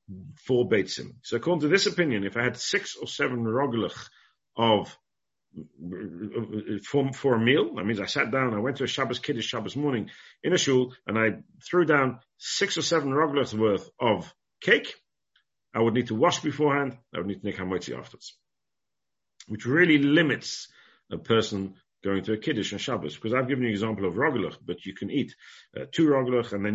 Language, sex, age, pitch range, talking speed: English, male, 50-69, 100-130 Hz, 195 wpm